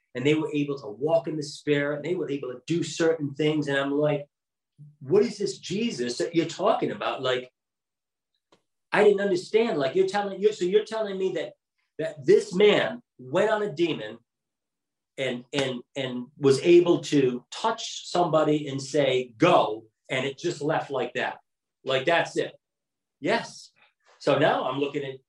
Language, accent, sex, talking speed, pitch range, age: English, American, male, 175 wpm, 135-175 Hz, 40-59